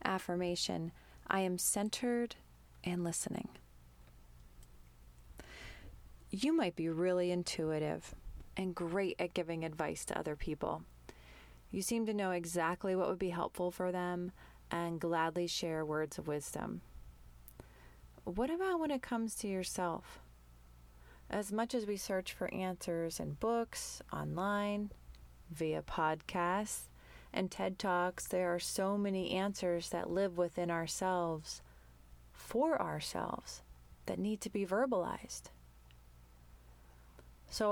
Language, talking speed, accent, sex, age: English, 120 wpm, American, female, 30-49